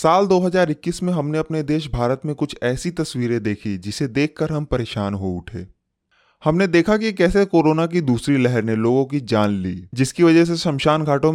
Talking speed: 190 wpm